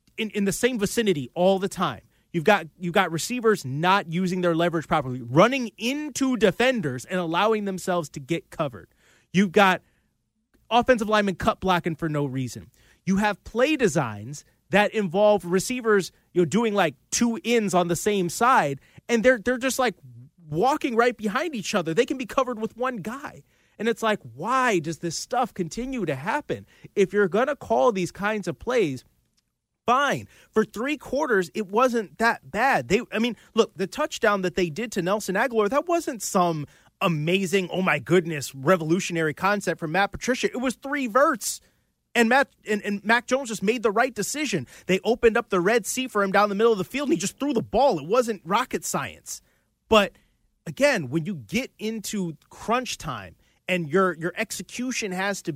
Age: 30-49